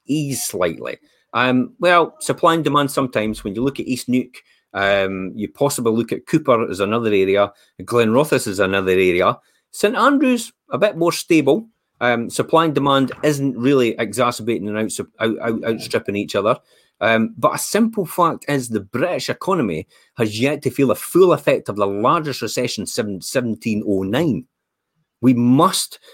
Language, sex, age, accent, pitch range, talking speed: English, male, 30-49, British, 110-145 Hz, 160 wpm